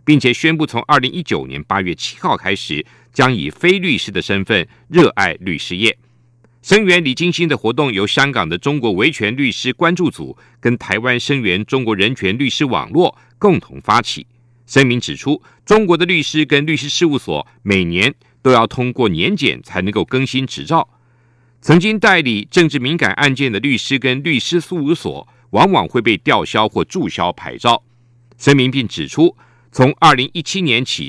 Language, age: German, 50-69